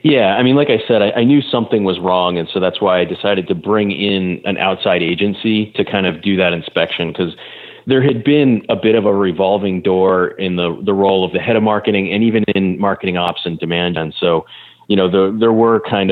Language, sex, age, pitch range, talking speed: English, male, 30-49, 90-105 Hz, 240 wpm